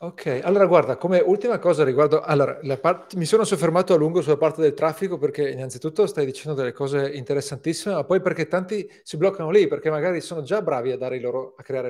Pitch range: 135-185 Hz